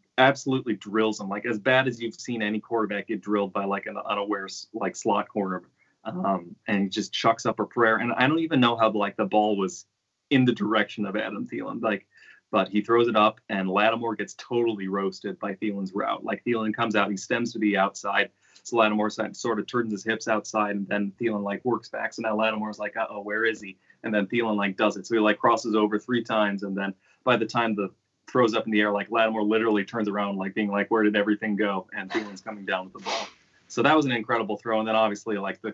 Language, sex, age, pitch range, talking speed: English, male, 30-49, 100-115 Hz, 240 wpm